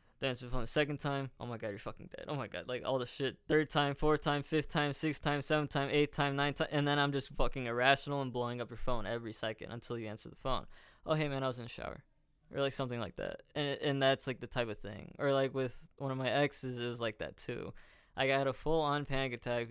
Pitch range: 125-145 Hz